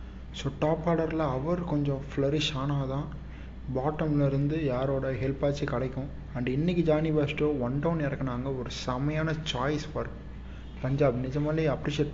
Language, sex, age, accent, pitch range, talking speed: Tamil, male, 30-49, native, 130-150 Hz, 135 wpm